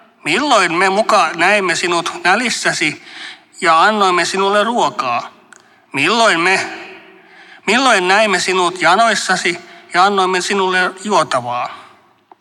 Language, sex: Finnish, male